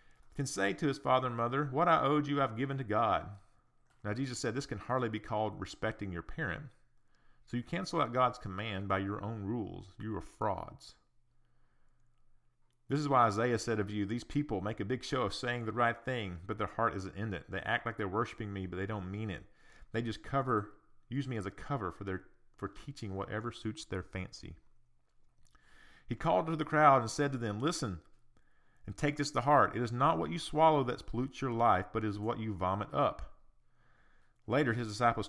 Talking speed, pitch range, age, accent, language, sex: 215 wpm, 100-130 Hz, 40-59, American, English, male